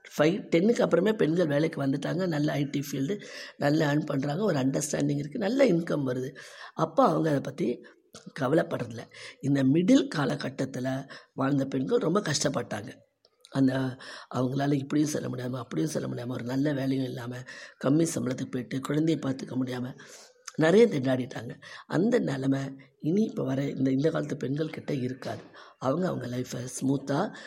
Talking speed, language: 140 wpm, Tamil